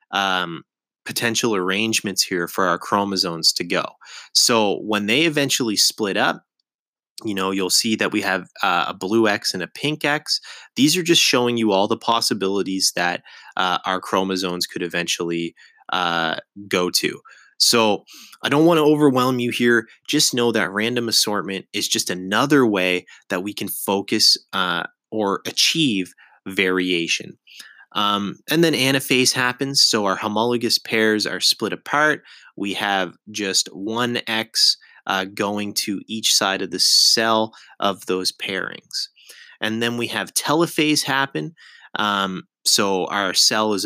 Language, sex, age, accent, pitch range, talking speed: English, male, 20-39, American, 95-120 Hz, 150 wpm